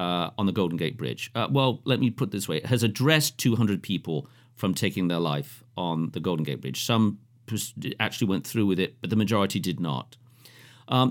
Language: English